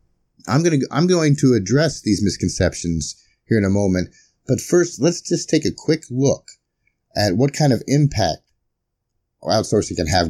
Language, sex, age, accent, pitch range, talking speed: English, male, 30-49, American, 90-130 Hz, 170 wpm